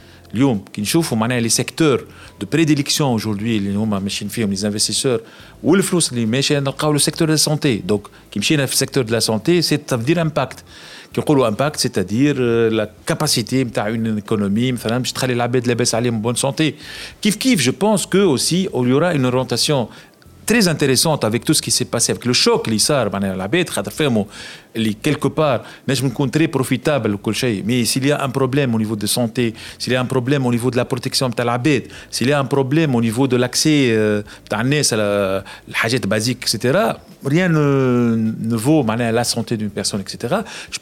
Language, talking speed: Arabic, 185 wpm